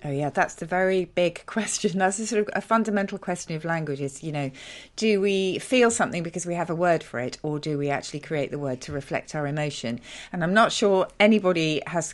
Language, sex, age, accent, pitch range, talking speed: English, female, 40-59, British, 145-195 Hz, 230 wpm